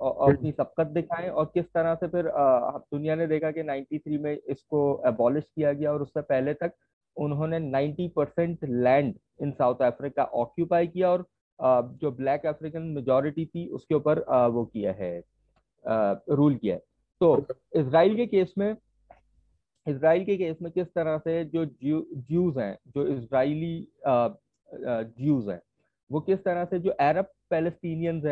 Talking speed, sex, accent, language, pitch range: 155 wpm, male, Indian, English, 140-165 Hz